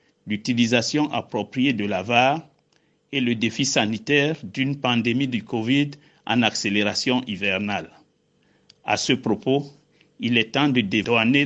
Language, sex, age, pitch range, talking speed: French, male, 60-79, 110-135 Hz, 125 wpm